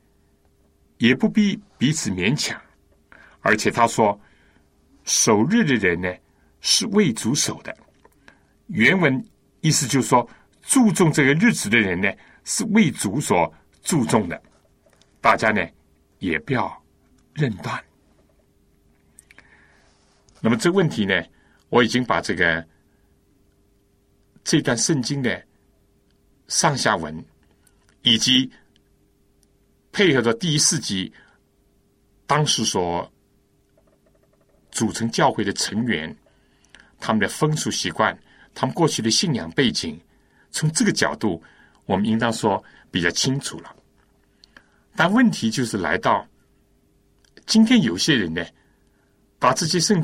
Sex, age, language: male, 60-79, Chinese